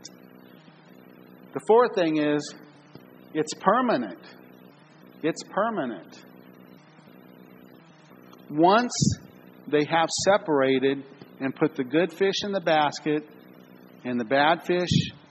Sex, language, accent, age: male, English, American, 50-69